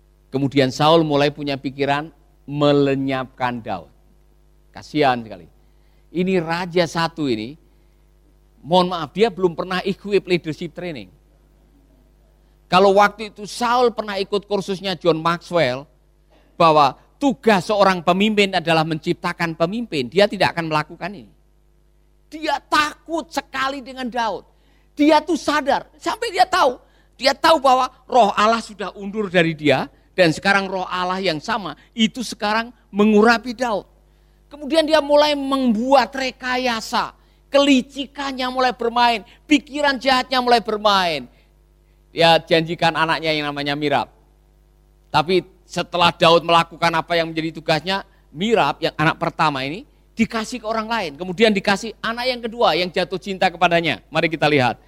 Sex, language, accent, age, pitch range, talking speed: male, Indonesian, native, 50-69, 160-235 Hz, 130 wpm